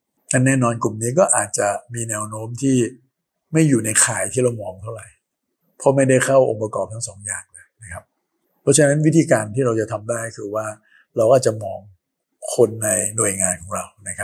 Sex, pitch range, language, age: male, 110-130 Hz, Thai, 60-79